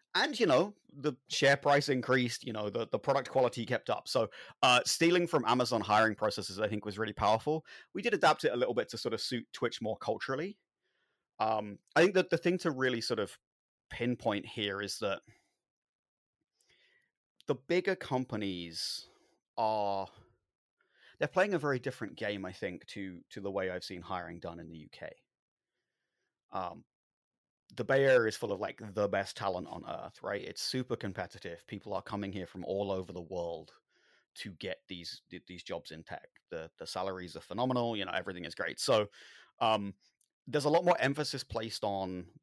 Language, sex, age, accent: English, male, 30-49, British